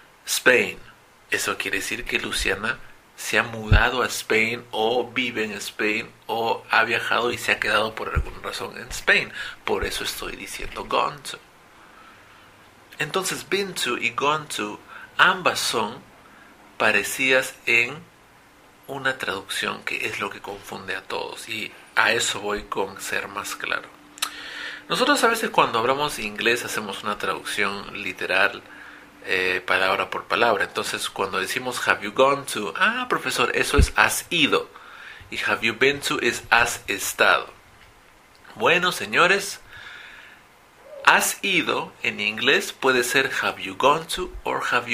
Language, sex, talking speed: English, male, 145 wpm